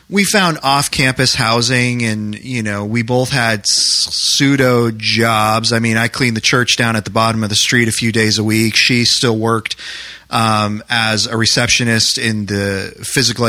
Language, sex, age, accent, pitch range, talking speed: English, male, 30-49, American, 110-135 Hz, 180 wpm